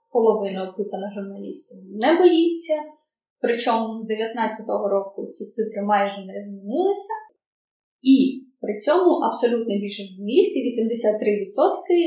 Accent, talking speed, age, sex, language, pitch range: native, 100 wpm, 20-39, female, Ukrainian, 205-275 Hz